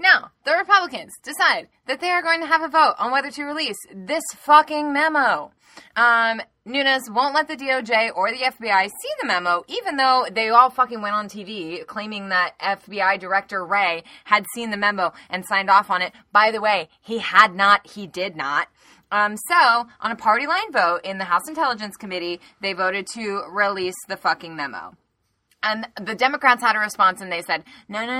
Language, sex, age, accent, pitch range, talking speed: English, female, 20-39, American, 180-250 Hz, 195 wpm